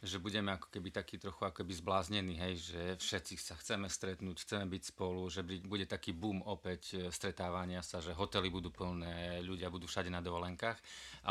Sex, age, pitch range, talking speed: male, 30-49, 95-115 Hz, 185 wpm